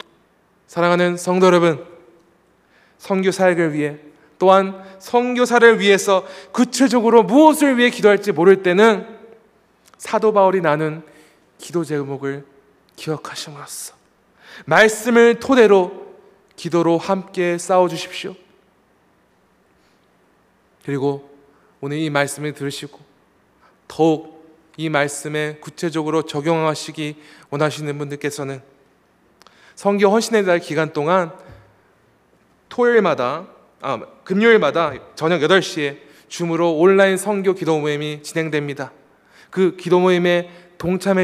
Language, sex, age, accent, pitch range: Korean, male, 20-39, native, 150-195 Hz